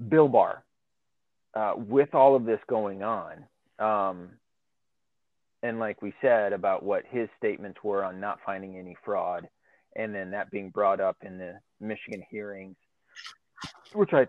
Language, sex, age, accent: English, male, 30-49, American